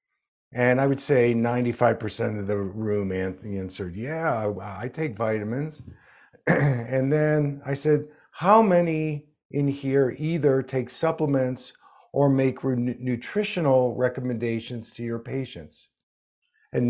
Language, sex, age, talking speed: English, male, 50-69, 115 wpm